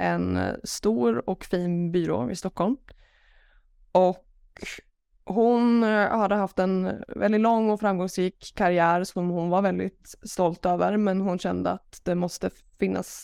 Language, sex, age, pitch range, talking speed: Swedish, female, 20-39, 165-195 Hz, 135 wpm